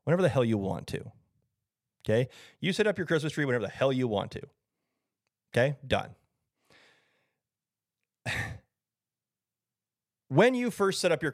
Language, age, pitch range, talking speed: English, 30-49, 130-190 Hz, 145 wpm